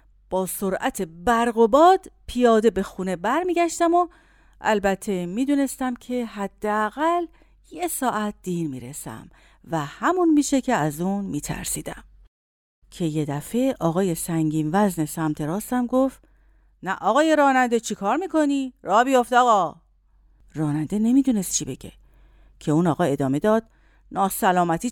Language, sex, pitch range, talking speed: Persian, female, 175-270 Hz, 125 wpm